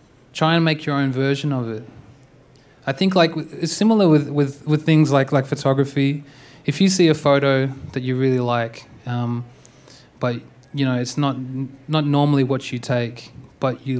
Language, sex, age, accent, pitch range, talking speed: English, male, 20-39, Australian, 125-145 Hz, 175 wpm